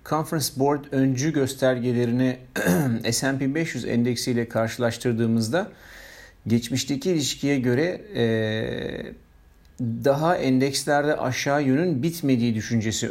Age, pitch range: 50-69, 110-140 Hz